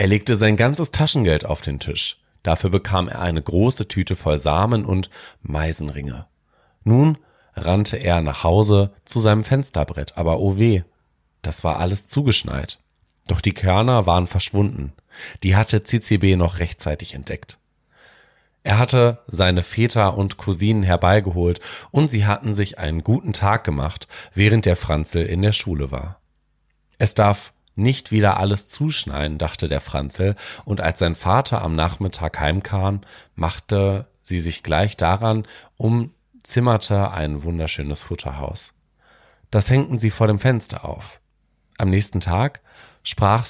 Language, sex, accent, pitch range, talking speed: German, male, German, 85-110 Hz, 140 wpm